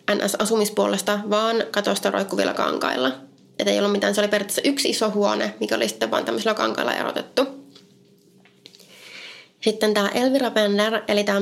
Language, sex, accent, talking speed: Finnish, female, native, 145 wpm